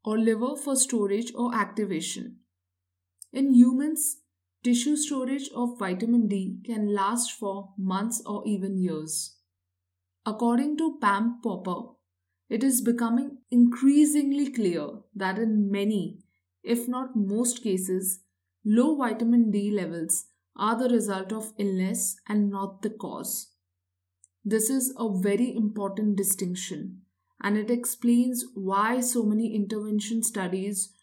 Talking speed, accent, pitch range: 120 wpm, Indian, 190-235 Hz